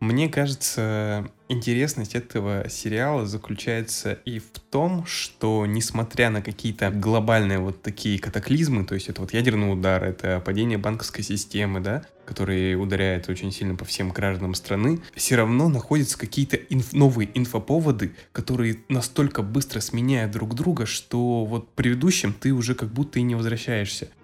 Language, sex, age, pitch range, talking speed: Russian, male, 20-39, 100-120 Hz, 145 wpm